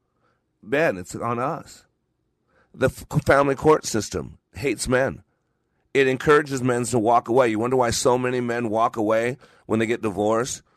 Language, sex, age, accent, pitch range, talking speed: English, male, 40-59, American, 115-145 Hz, 155 wpm